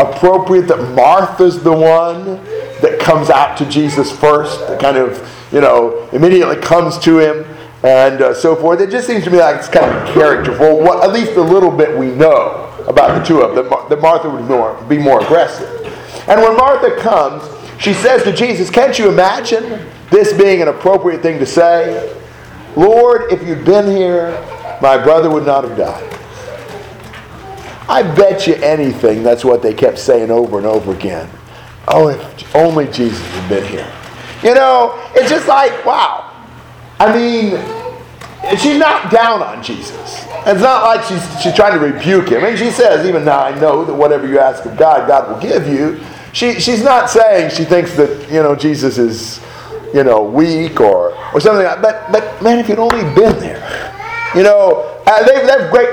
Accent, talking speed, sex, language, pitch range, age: American, 190 wpm, male, English, 145-230 Hz, 50-69